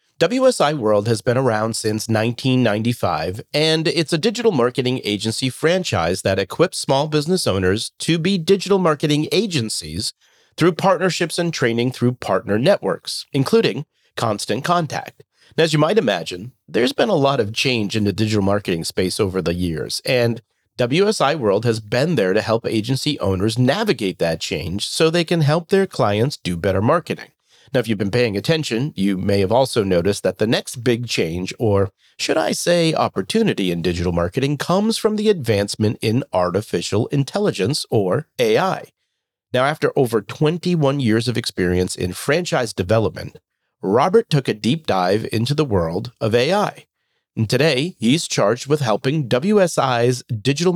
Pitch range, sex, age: 105-155 Hz, male, 40-59